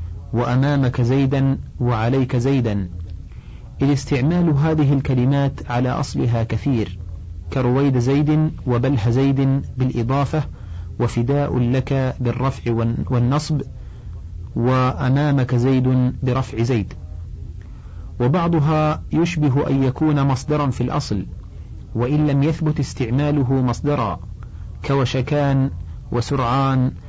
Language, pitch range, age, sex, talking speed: Arabic, 110-140 Hz, 40-59, male, 80 wpm